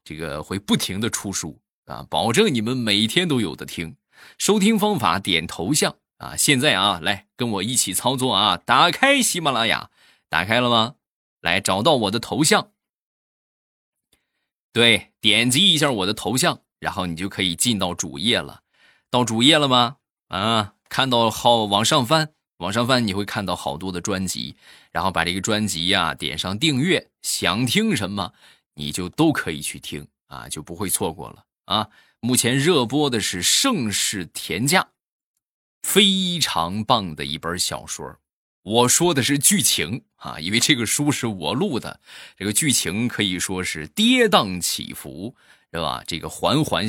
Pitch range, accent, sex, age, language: 95-135 Hz, native, male, 20-39, Chinese